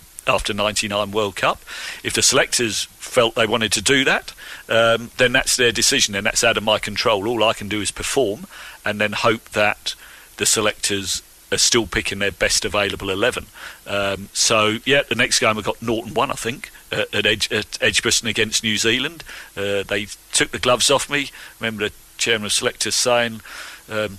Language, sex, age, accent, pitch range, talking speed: English, male, 50-69, British, 100-120 Hz, 185 wpm